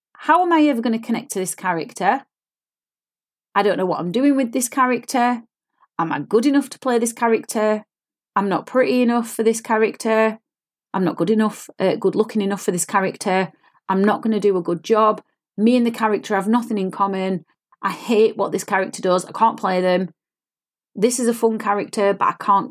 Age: 30-49